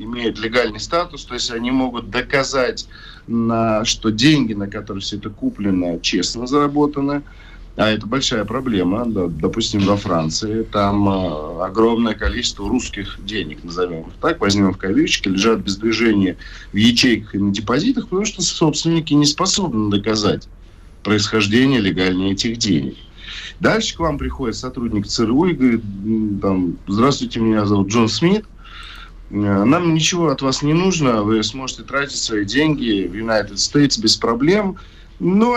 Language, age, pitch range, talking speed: Russian, 40-59, 100-140 Hz, 140 wpm